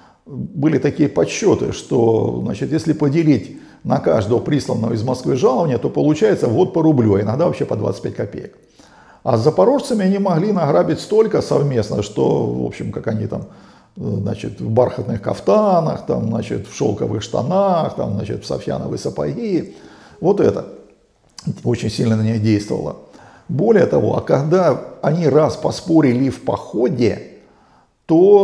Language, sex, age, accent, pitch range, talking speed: Russian, male, 50-69, native, 115-165 Hz, 145 wpm